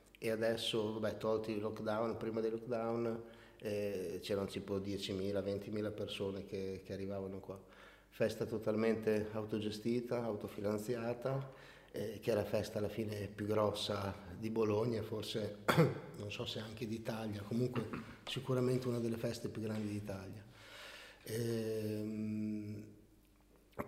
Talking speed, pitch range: 120 wpm, 105-120 Hz